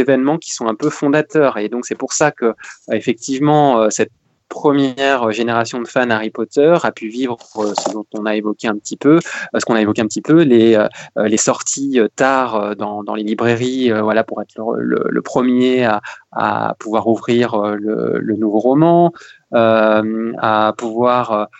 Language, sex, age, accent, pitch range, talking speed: French, male, 20-39, French, 110-135 Hz, 170 wpm